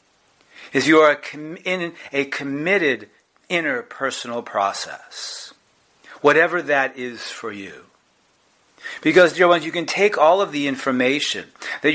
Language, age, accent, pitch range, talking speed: English, 50-69, American, 125-165 Hz, 125 wpm